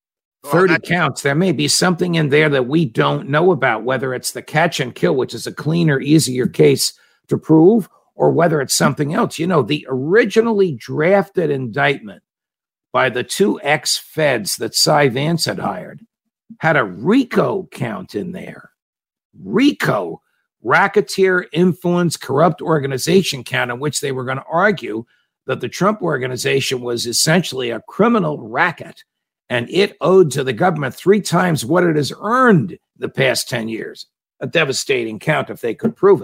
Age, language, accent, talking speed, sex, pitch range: 50-69, English, American, 160 wpm, male, 130-185 Hz